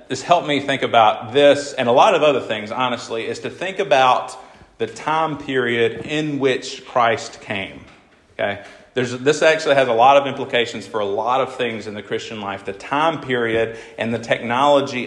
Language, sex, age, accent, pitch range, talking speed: English, male, 40-59, American, 115-145 Hz, 190 wpm